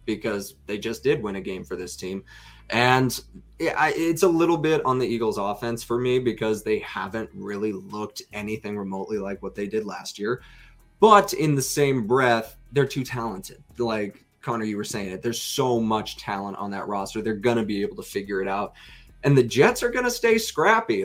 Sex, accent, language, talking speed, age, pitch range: male, American, English, 205 wpm, 20-39, 115-155 Hz